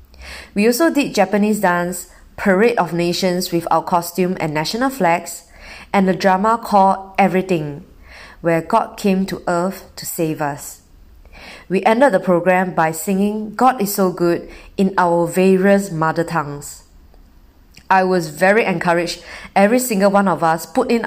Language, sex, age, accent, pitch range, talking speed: English, female, 20-39, Malaysian, 160-200 Hz, 150 wpm